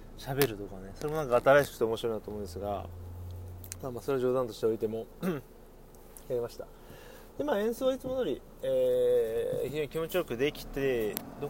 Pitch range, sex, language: 125-195 Hz, male, Japanese